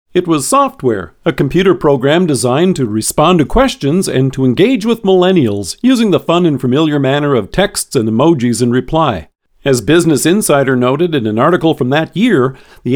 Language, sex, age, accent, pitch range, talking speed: English, male, 50-69, American, 130-180 Hz, 180 wpm